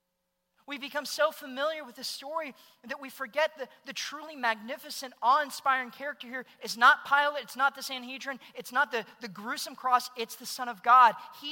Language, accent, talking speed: English, American, 190 wpm